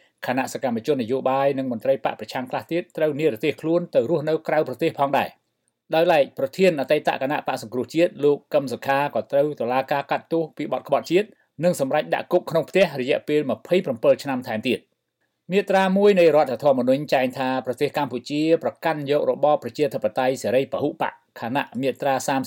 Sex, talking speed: male, 45 wpm